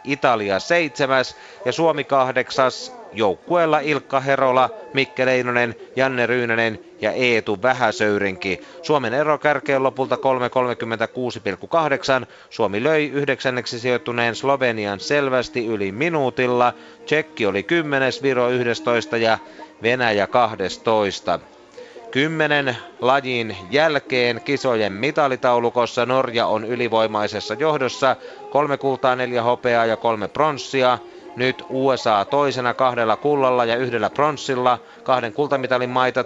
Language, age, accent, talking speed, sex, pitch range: Finnish, 30-49, native, 105 wpm, male, 115-135 Hz